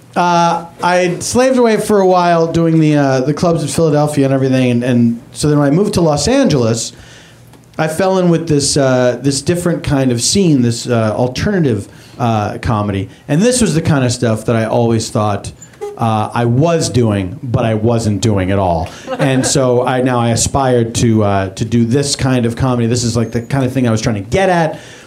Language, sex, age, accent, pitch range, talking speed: English, male, 40-59, American, 120-155 Hz, 215 wpm